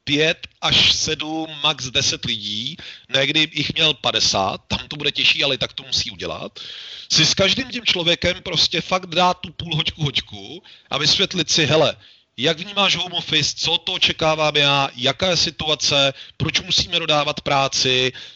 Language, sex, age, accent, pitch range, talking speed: Czech, male, 40-59, native, 140-185 Hz, 170 wpm